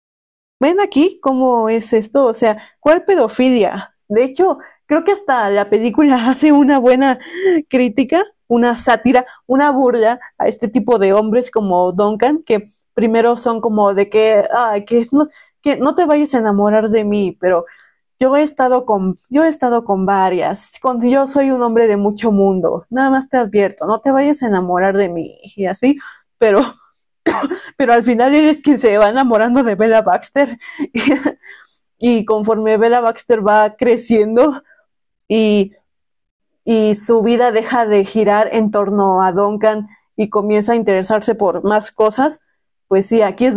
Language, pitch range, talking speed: Spanish, 210-270 Hz, 160 wpm